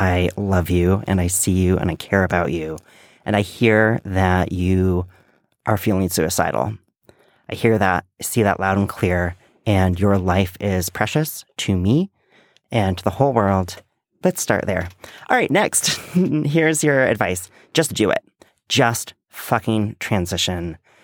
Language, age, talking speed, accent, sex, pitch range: English, 30-49, 160 wpm, American, male, 95-125 Hz